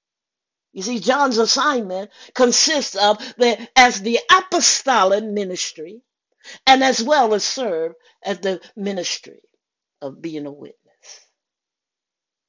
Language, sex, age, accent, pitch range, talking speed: English, female, 50-69, American, 205-310 Hz, 110 wpm